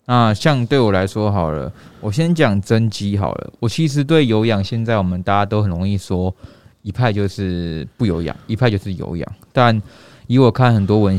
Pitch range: 95-115 Hz